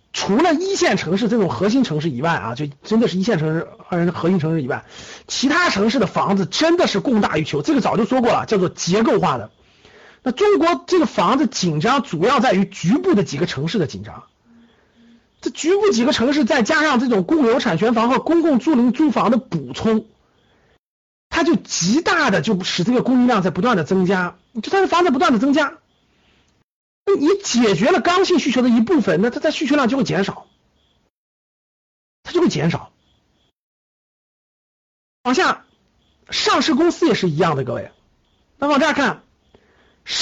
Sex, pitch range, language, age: male, 190-300 Hz, Chinese, 50-69